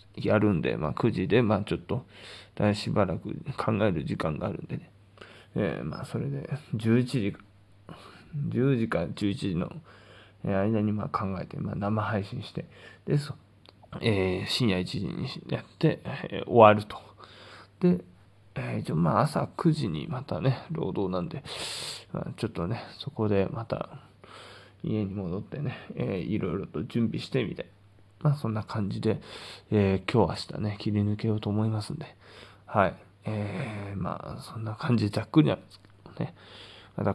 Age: 20-39